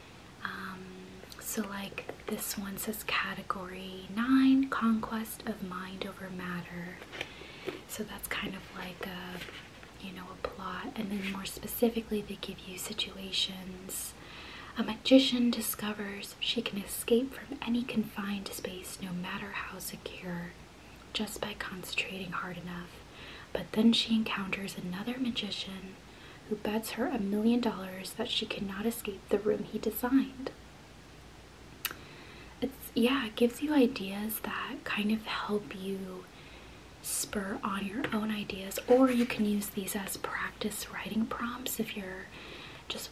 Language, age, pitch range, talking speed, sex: English, 20-39, 195-235 Hz, 135 wpm, female